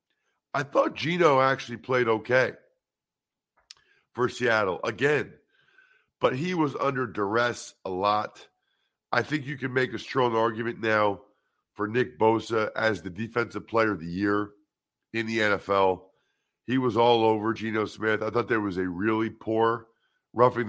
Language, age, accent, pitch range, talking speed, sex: English, 50-69, American, 110-150 Hz, 150 wpm, male